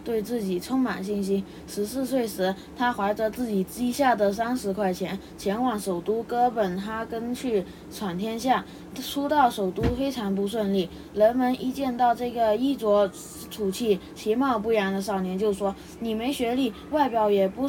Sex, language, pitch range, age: female, Chinese, 200-240 Hz, 20-39